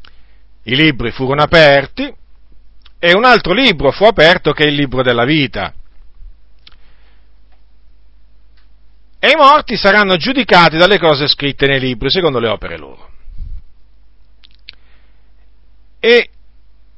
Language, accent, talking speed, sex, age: Italian, native, 110 wpm, male, 50-69